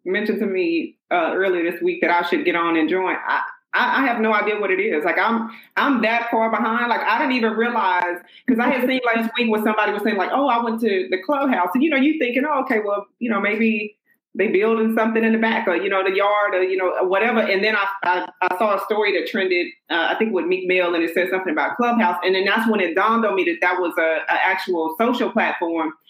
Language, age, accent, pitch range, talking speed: English, 30-49, American, 190-230 Hz, 265 wpm